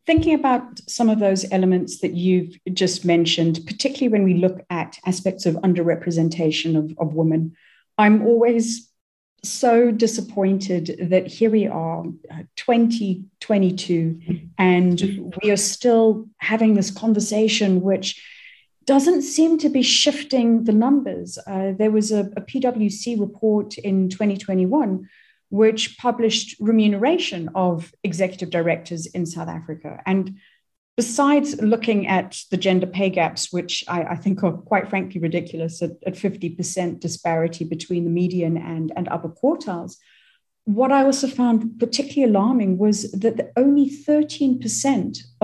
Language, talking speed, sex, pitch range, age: English, 130 wpm, female, 180-230 Hz, 40-59